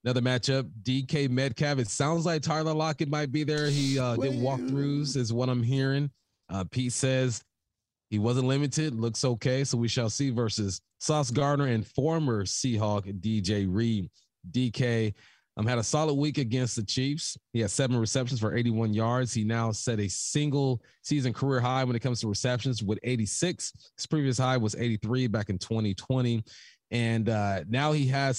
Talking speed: 180 wpm